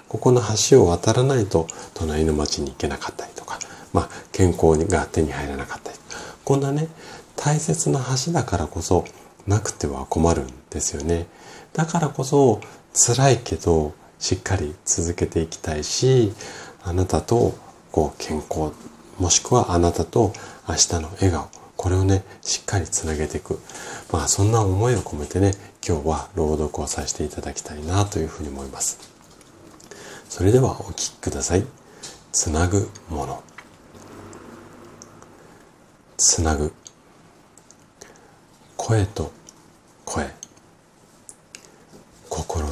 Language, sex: Japanese, male